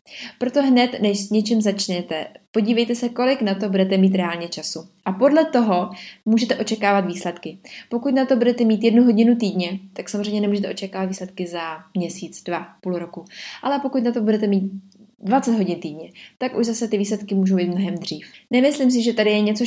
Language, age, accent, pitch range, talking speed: Czech, 20-39, native, 190-230 Hz, 190 wpm